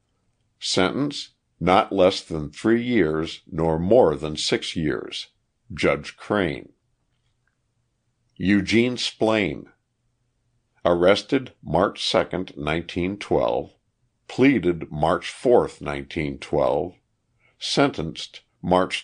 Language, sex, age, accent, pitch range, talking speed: English, male, 60-79, American, 90-120 Hz, 85 wpm